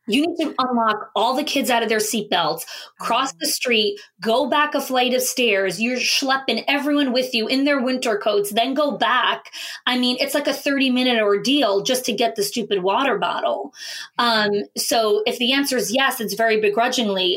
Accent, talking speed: American, 195 wpm